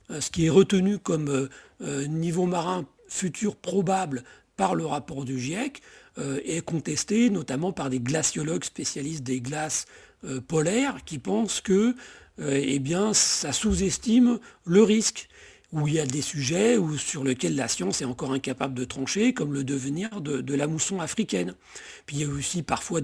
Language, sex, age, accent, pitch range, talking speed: French, male, 40-59, French, 135-190 Hz, 160 wpm